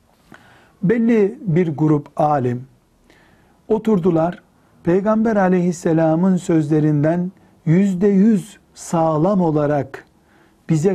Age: 60-79